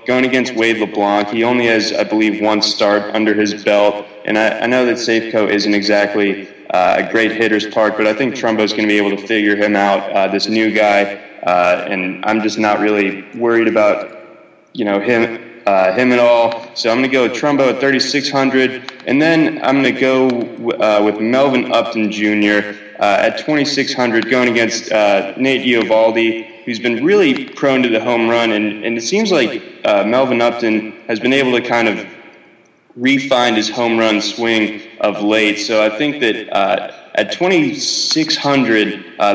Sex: male